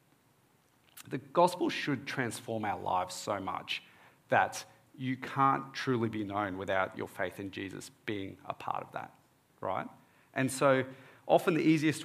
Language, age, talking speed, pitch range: English, 30-49, 150 wpm, 110-140 Hz